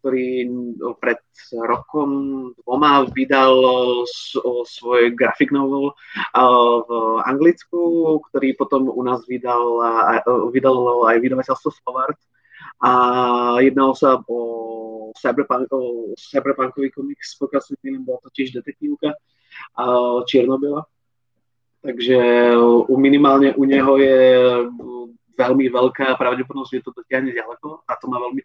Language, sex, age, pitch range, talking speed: Slovak, male, 20-39, 120-135 Hz, 100 wpm